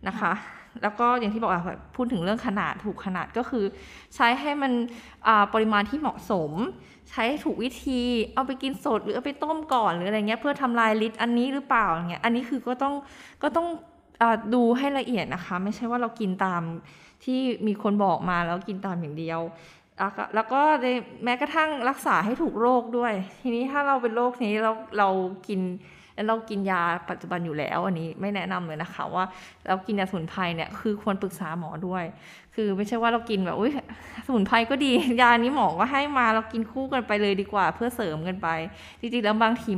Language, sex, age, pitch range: Thai, female, 20-39, 185-240 Hz